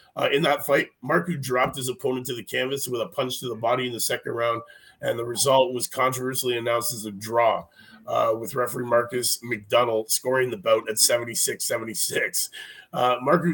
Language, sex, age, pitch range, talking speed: English, male, 30-49, 125-150 Hz, 185 wpm